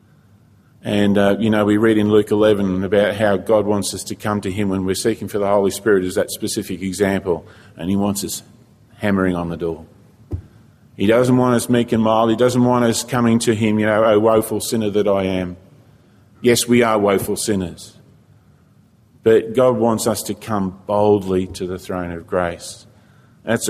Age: 50-69